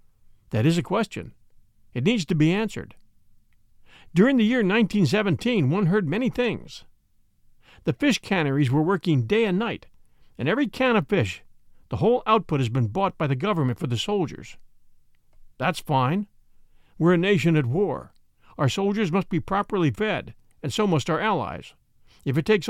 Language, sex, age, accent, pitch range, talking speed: English, male, 50-69, American, 130-210 Hz, 165 wpm